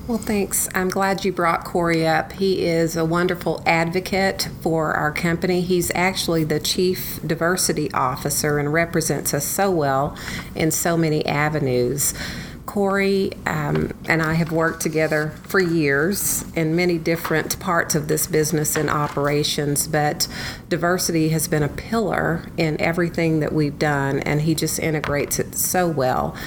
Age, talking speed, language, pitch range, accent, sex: 40-59, 150 wpm, English, 145-170 Hz, American, female